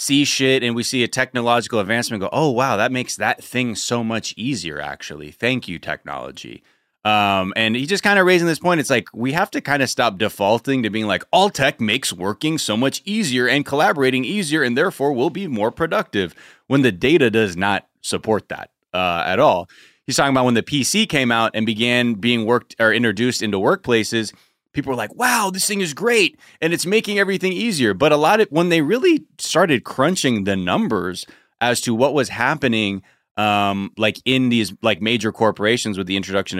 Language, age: English, 30-49